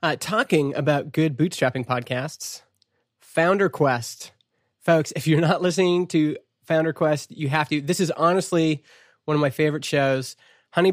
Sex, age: male, 20-39